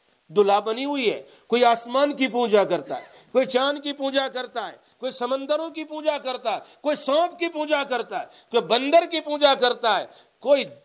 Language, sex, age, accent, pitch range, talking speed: English, male, 50-69, Indian, 220-310 Hz, 195 wpm